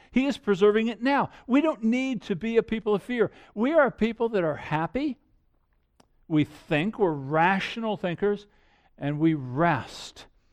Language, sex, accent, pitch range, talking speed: English, male, American, 140-220 Hz, 165 wpm